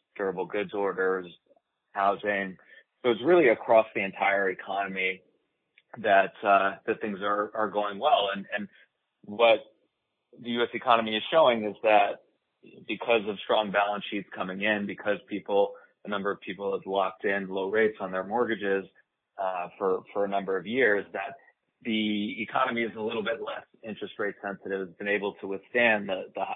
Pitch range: 95-110 Hz